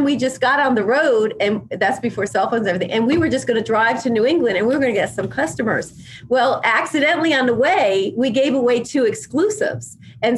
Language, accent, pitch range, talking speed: English, American, 220-290 Hz, 235 wpm